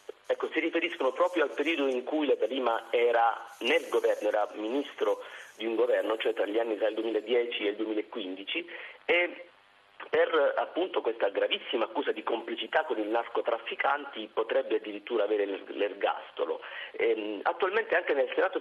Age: 40-59